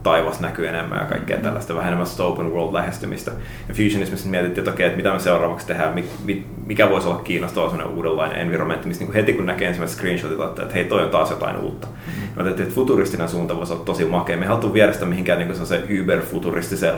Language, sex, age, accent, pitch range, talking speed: Finnish, male, 30-49, native, 85-100 Hz, 190 wpm